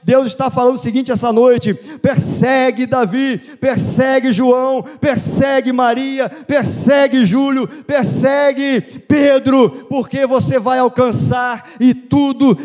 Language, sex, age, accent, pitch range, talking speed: Portuguese, male, 50-69, Brazilian, 180-255 Hz, 110 wpm